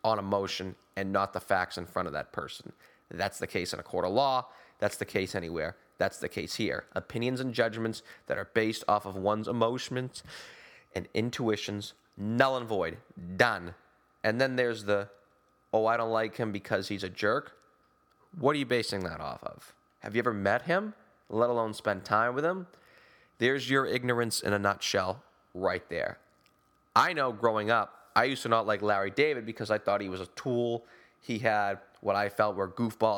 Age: 20-39